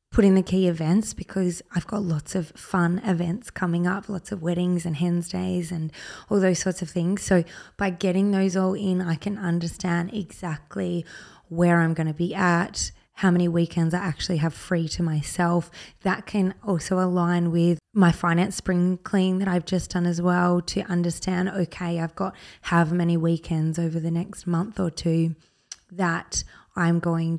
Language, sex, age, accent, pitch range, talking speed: English, female, 20-39, Australian, 170-185 Hz, 180 wpm